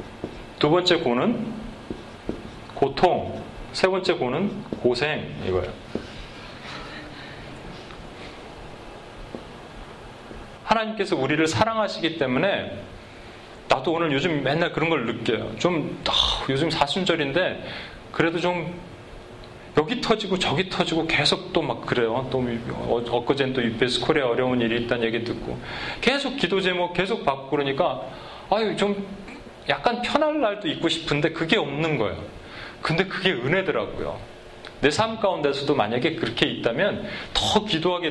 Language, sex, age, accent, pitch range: Korean, male, 30-49, native, 125-190 Hz